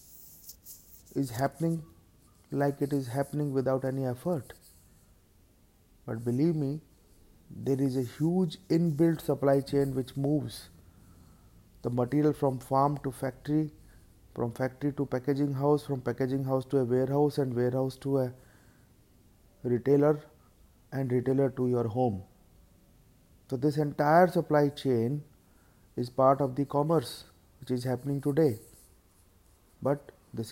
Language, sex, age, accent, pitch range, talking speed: English, male, 30-49, Indian, 95-140 Hz, 125 wpm